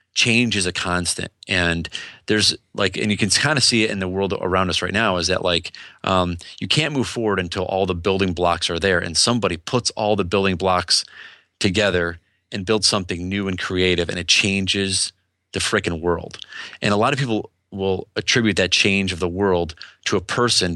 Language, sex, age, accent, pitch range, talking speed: English, male, 30-49, American, 90-105 Hz, 205 wpm